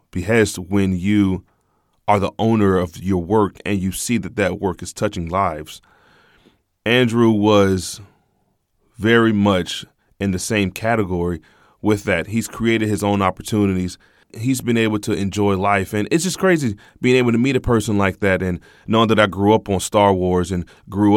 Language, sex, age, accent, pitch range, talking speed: English, male, 20-39, American, 95-110 Hz, 175 wpm